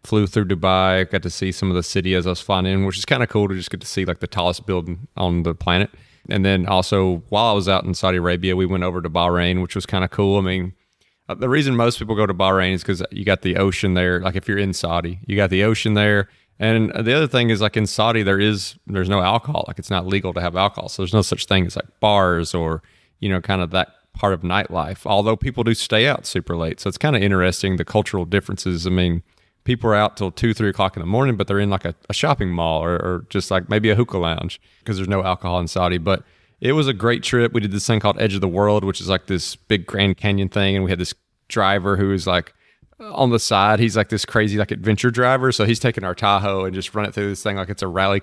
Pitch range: 95-105 Hz